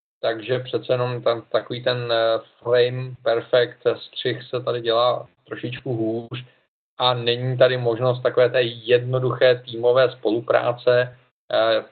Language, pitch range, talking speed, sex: Czech, 115-130 Hz, 115 wpm, male